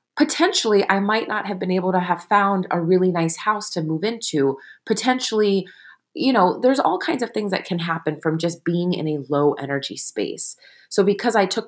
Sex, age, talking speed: female, 30-49, 205 wpm